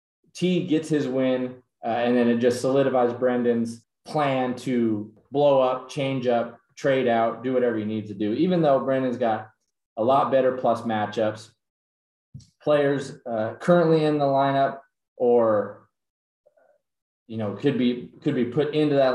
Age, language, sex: 20-39, English, male